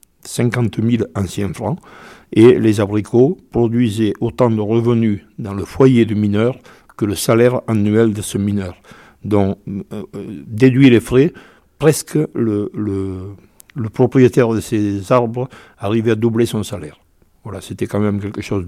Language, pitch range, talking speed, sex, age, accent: French, 100-120 Hz, 150 wpm, male, 60-79, French